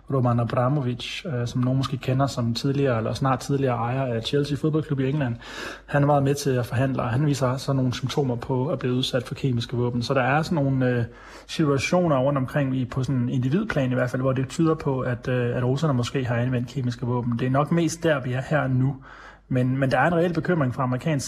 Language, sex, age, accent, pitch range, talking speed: Danish, male, 30-49, native, 120-140 Hz, 225 wpm